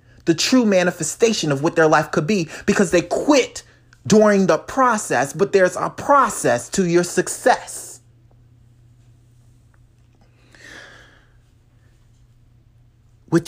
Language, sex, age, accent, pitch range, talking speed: English, male, 30-49, American, 120-195 Hz, 100 wpm